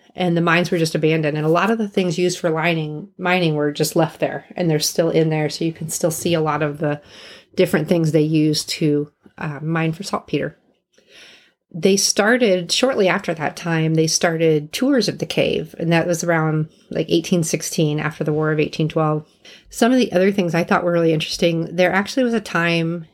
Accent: American